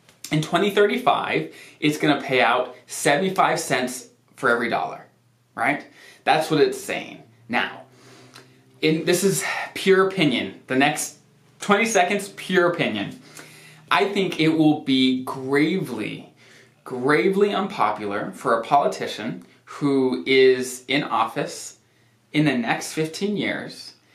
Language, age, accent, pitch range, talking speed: English, 20-39, American, 120-155 Hz, 120 wpm